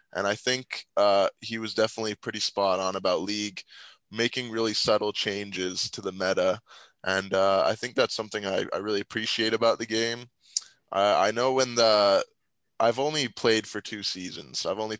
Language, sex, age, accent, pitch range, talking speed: English, male, 20-39, American, 100-115 Hz, 180 wpm